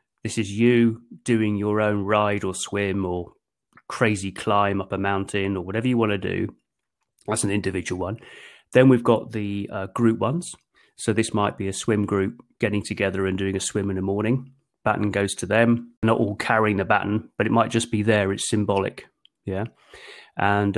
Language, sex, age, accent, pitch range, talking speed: English, male, 30-49, British, 100-115 Hz, 195 wpm